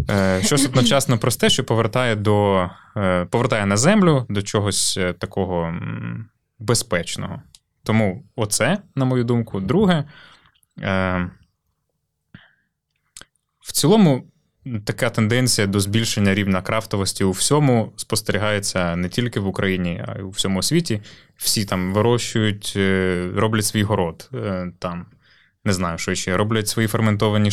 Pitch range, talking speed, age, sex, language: 95-120 Hz, 120 wpm, 20-39, male, Ukrainian